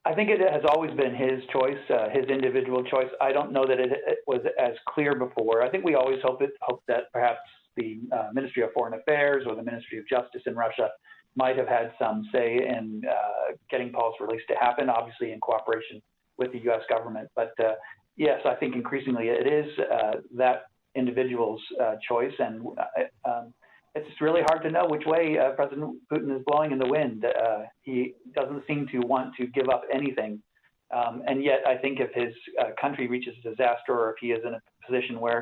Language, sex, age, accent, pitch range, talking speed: English, male, 50-69, American, 115-135 Hz, 210 wpm